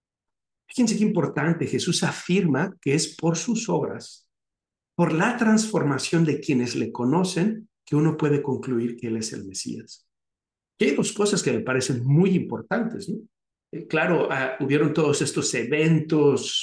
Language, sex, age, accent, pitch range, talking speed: Spanish, male, 60-79, Mexican, 130-185 Hz, 155 wpm